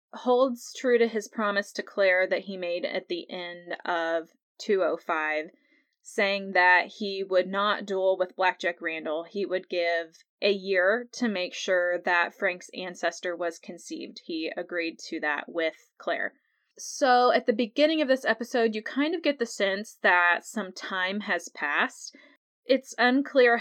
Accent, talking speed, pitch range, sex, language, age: American, 160 wpm, 185-235 Hz, female, English, 20-39